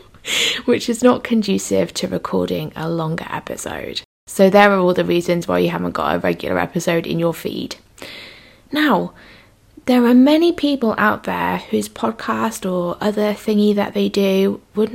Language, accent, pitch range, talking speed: English, British, 175-235 Hz, 165 wpm